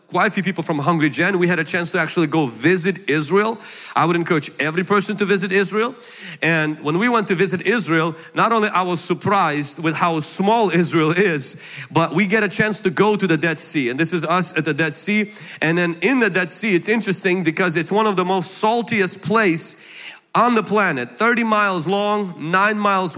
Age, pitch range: 30-49, 170-210 Hz